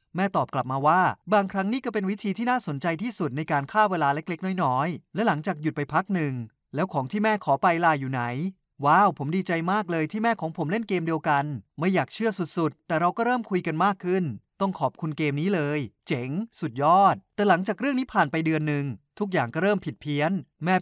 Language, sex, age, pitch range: Thai, male, 20-39, 145-200 Hz